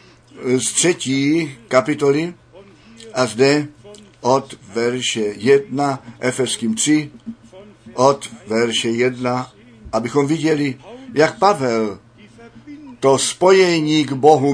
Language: Czech